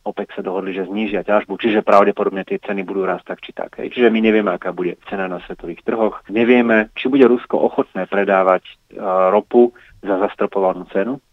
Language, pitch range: Slovak, 95-105 Hz